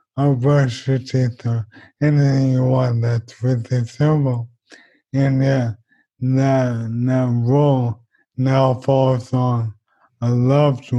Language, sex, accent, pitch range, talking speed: English, male, American, 120-135 Hz, 115 wpm